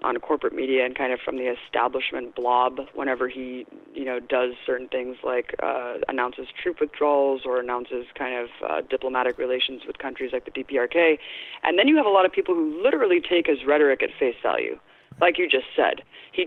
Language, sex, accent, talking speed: English, female, American, 200 wpm